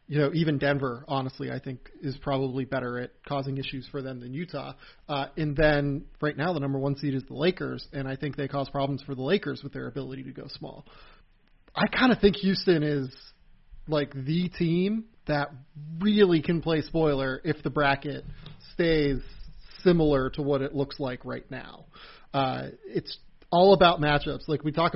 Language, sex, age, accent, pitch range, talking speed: English, male, 30-49, American, 140-160 Hz, 190 wpm